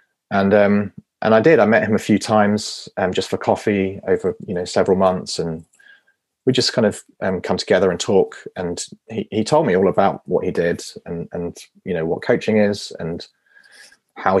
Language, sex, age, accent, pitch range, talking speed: English, male, 30-49, British, 95-135 Hz, 205 wpm